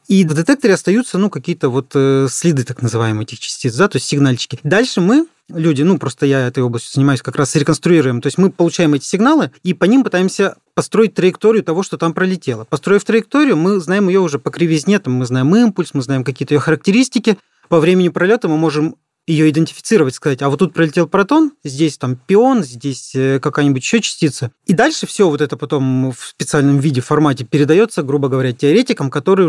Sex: male